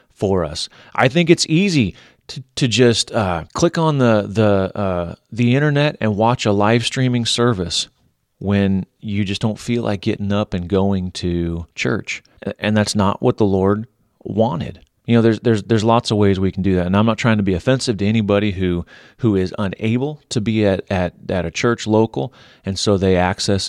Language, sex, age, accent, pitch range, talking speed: English, male, 30-49, American, 95-110 Hz, 200 wpm